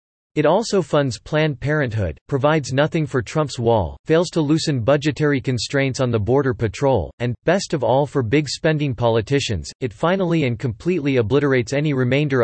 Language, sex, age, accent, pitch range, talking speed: English, male, 40-59, American, 120-150 Hz, 165 wpm